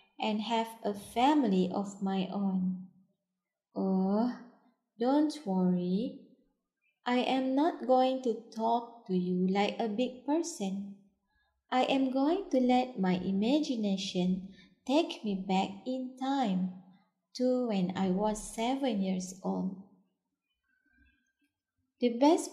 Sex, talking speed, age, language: female, 115 wpm, 20-39, English